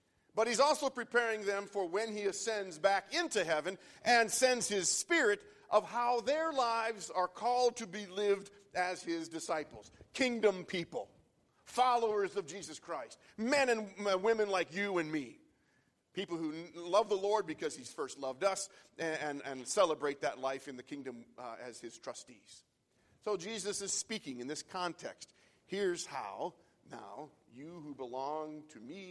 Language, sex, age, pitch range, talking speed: English, male, 40-59, 155-220 Hz, 155 wpm